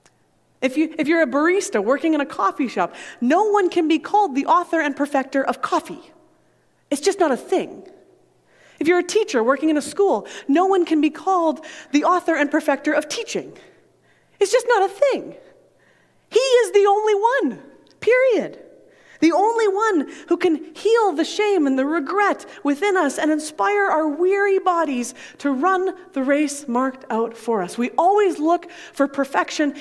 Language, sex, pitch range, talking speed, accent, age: English, female, 250-350 Hz, 175 wpm, American, 30-49